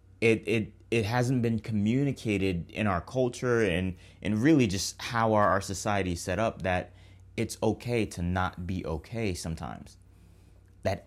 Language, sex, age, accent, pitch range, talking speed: English, male, 30-49, American, 95-120 Hz, 155 wpm